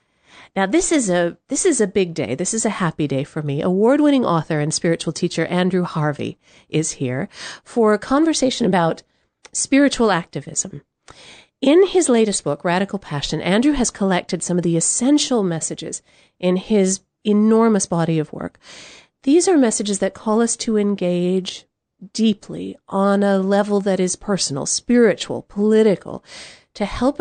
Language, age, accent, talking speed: English, 40-59, American, 155 wpm